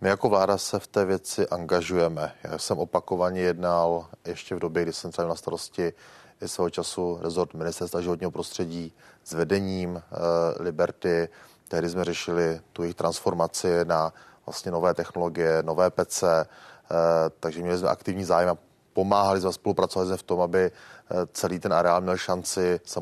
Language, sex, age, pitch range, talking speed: Czech, male, 30-49, 90-100 Hz, 155 wpm